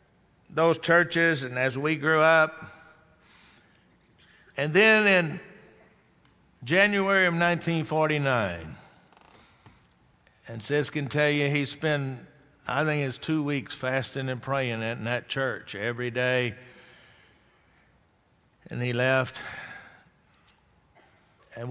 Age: 60-79